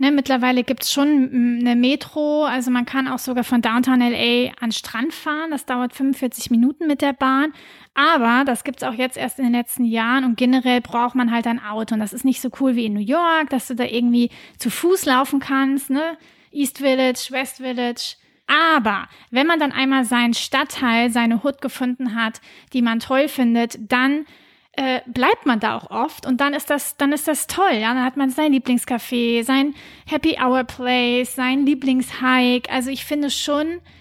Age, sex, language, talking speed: 30-49, female, German, 195 wpm